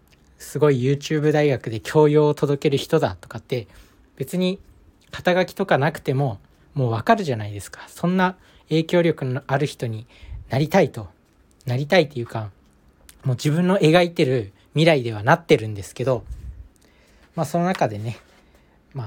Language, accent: Japanese, native